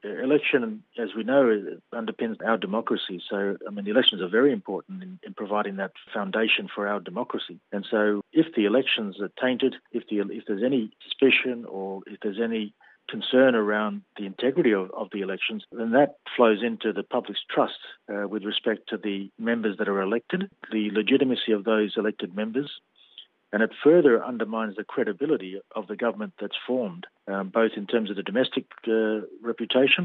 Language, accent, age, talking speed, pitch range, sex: English, Australian, 40-59, 180 wpm, 105-125 Hz, male